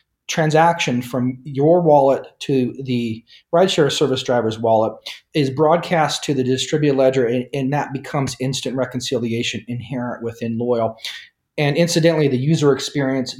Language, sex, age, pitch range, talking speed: English, male, 40-59, 120-150 Hz, 135 wpm